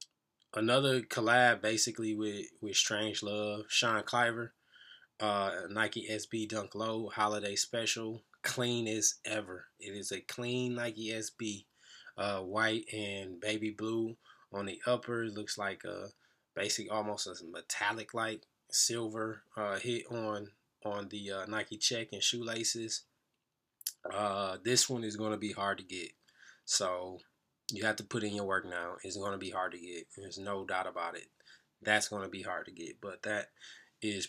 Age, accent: 20-39, American